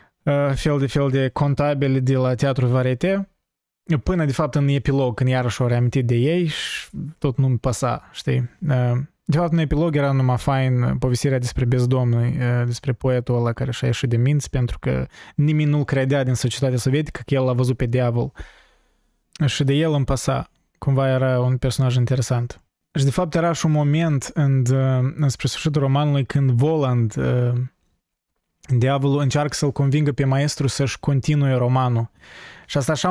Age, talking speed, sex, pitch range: 20-39, 180 wpm, male, 125-150 Hz